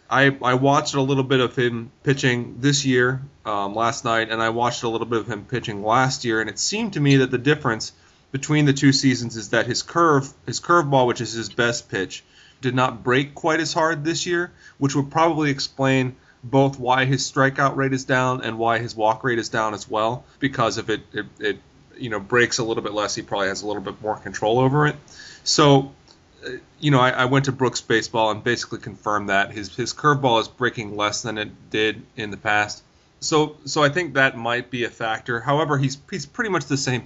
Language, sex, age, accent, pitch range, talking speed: English, male, 30-49, American, 115-135 Hz, 225 wpm